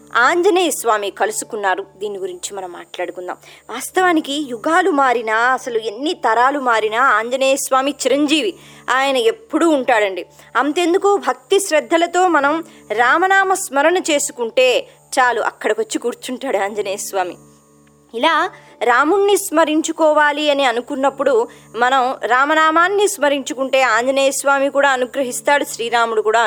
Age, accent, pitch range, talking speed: 20-39, native, 235-350 Hz, 100 wpm